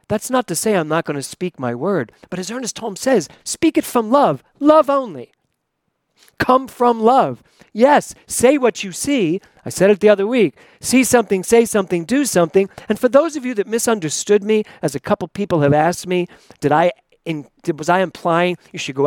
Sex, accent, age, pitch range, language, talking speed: male, American, 40-59, 155-245 Hz, English, 210 wpm